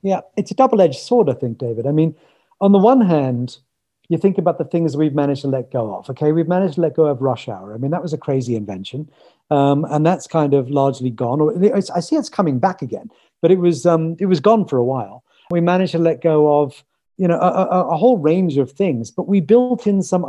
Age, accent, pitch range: 40-59, British, 140-180 Hz